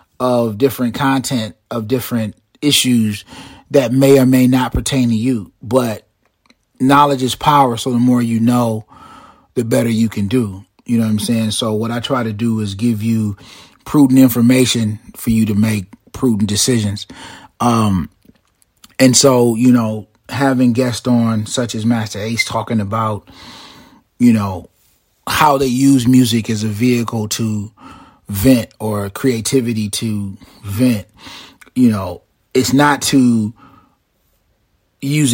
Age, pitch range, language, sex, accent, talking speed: 30-49, 110-125 Hz, English, male, American, 145 wpm